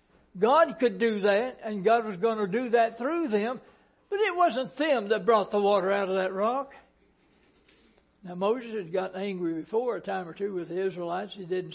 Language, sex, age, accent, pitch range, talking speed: English, male, 60-79, American, 195-255 Hz, 205 wpm